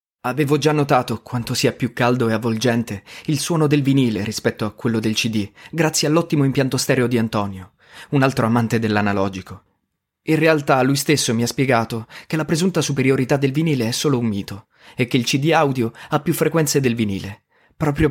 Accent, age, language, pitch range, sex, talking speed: native, 20-39, Italian, 110-145 Hz, male, 185 wpm